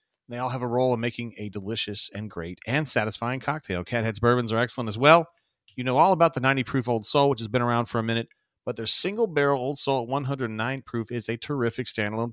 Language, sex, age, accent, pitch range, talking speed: English, male, 40-59, American, 105-130 Hz, 240 wpm